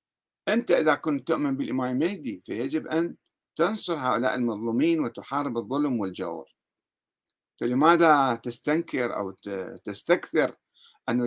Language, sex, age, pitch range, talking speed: Arabic, male, 50-69, 130-180 Hz, 100 wpm